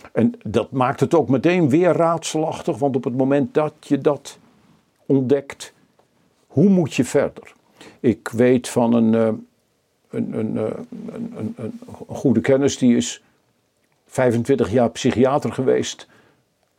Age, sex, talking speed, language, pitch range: 50-69, male, 130 wpm, Dutch, 110-140 Hz